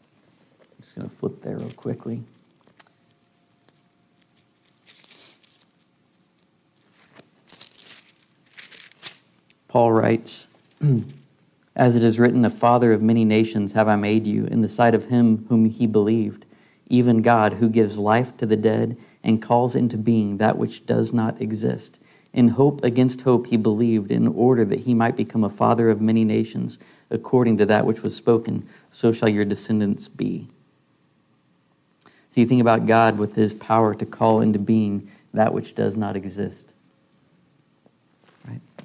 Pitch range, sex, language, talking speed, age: 110-120 Hz, male, English, 145 wpm, 50-69